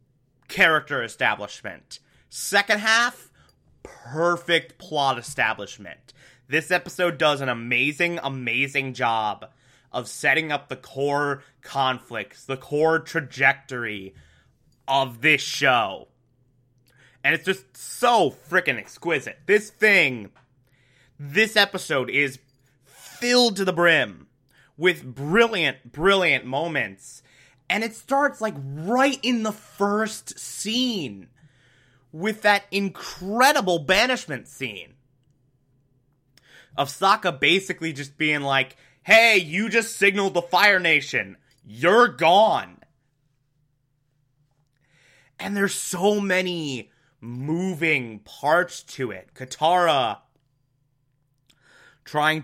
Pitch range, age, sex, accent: 130-180 Hz, 20-39, male, American